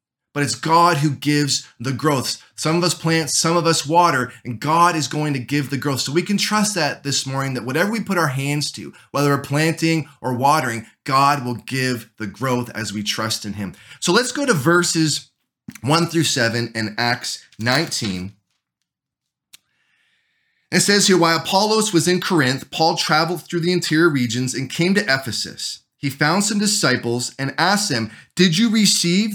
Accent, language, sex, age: American, English, male, 20-39